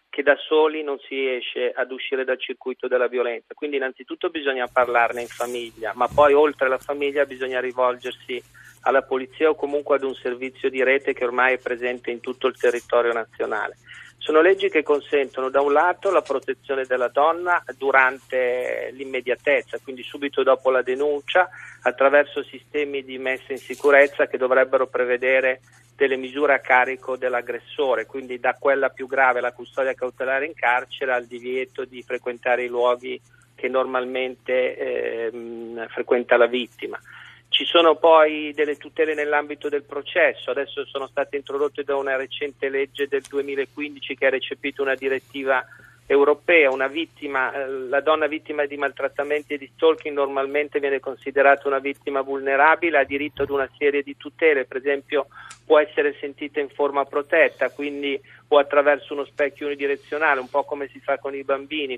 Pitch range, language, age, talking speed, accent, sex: 130-150 Hz, Italian, 40-59, 160 wpm, native, male